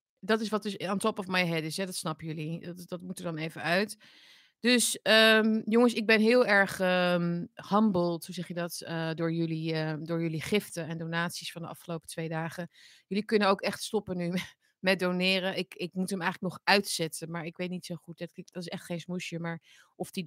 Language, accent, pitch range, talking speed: Dutch, Dutch, 160-190 Hz, 230 wpm